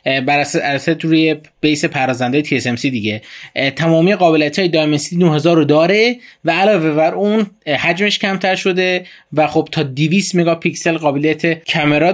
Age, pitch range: 20-39, 140-175 Hz